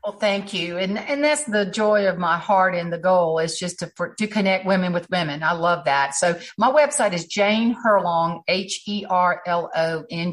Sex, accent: female, American